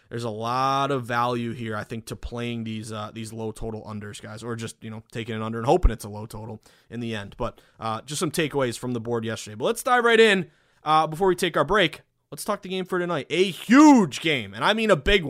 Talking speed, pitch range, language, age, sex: 265 wpm, 120-165 Hz, English, 20-39, male